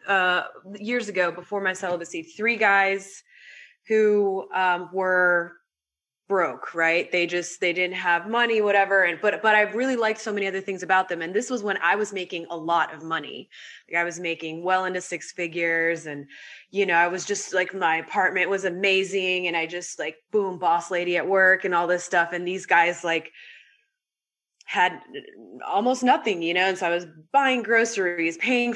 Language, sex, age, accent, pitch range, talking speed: English, female, 20-39, American, 170-200 Hz, 190 wpm